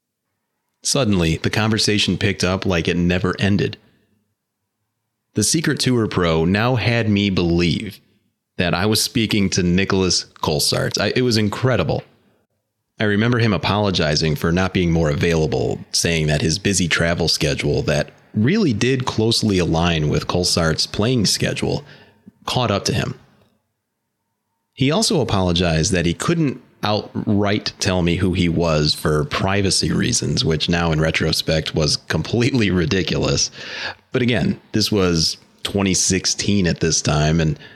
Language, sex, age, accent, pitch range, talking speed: English, male, 30-49, American, 85-110 Hz, 135 wpm